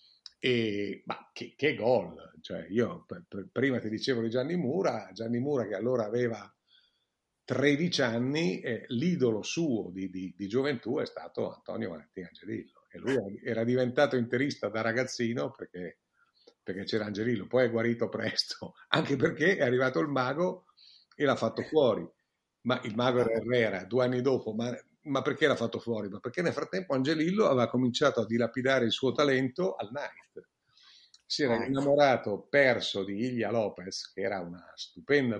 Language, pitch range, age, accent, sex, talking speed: Italian, 105-130 Hz, 50-69, native, male, 165 wpm